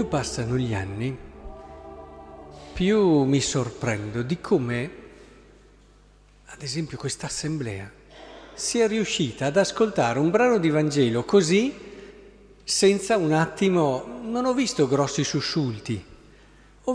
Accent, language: native, Italian